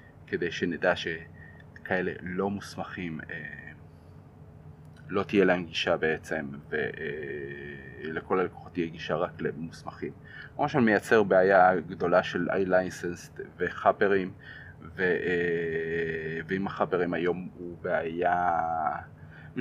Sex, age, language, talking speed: male, 30-49, Hebrew, 100 wpm